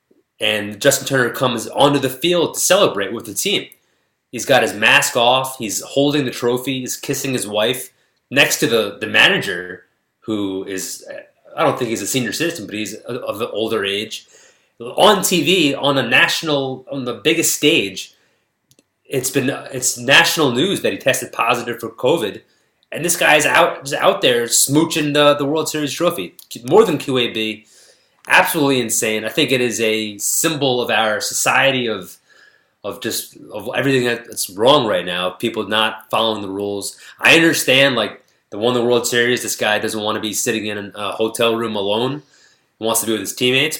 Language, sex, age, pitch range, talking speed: English, male, 30-49, 110-140 Hz, 180 wpm